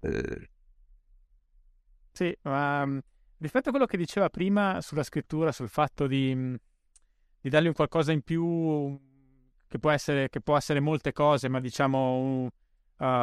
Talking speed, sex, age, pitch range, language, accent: 140 wpm, male, 20-39, 125-145 Hz, Italian, native